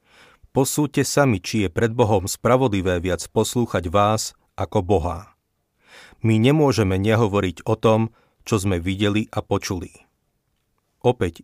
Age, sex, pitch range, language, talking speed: 40-59, male, 95-110 Hz, Slovak, 120 wpm